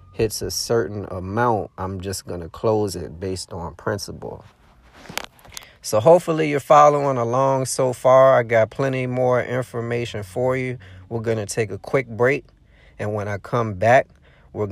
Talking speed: 165 wpm